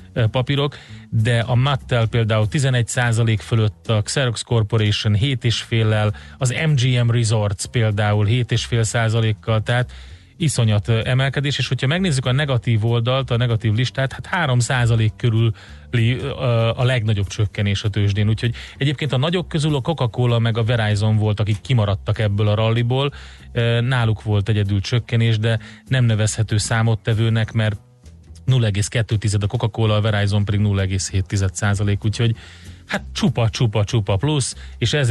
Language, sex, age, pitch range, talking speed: Hungarian, male, 30-49, 105-120 Hz, 140 wpm